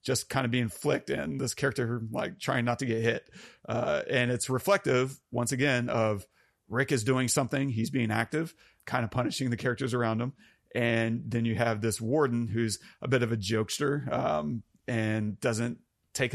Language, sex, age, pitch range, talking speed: English, male, 30-49, 115-135 Hz, 185 wpm